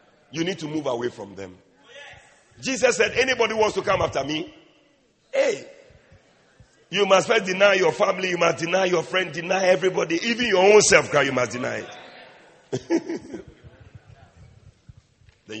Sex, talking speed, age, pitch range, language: male, 150 wpm, 40-59, 120-195 Hz, English